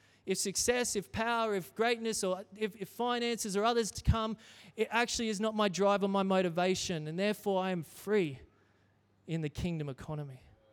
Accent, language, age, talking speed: Australian, English, 30-49, 180 wpm